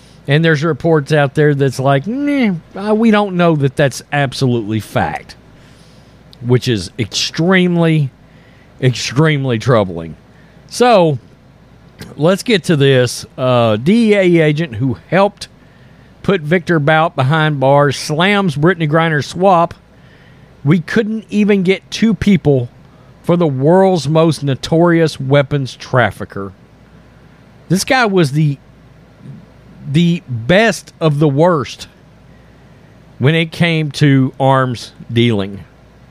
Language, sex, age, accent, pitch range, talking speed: English, male, 40-59, American, 135-185 Hz, 110 wpm